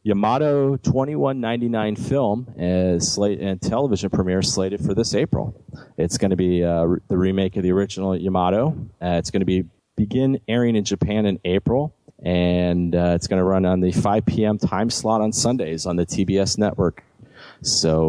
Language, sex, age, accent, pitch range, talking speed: English, male, 30-49, American, 90-105 Hz, 180 wpm